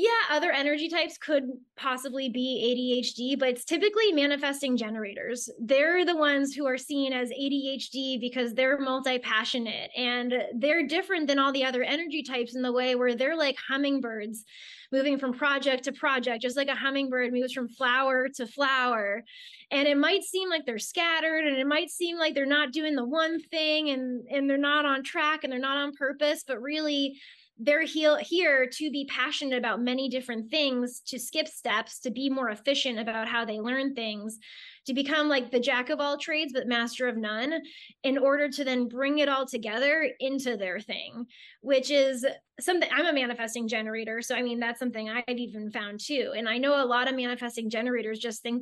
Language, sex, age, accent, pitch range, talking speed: English, female, 20-39, American, 235-285 Hz, 190 wpm